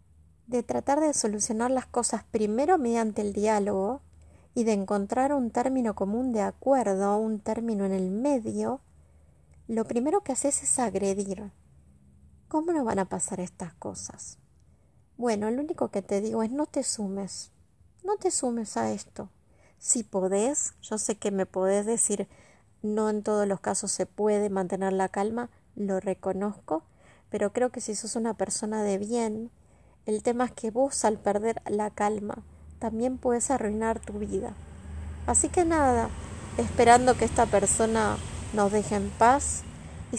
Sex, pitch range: female, 195-240 Hz